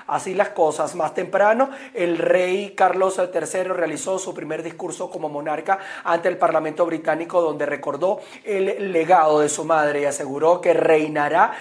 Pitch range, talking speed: 155-185 Hz, 155 wpm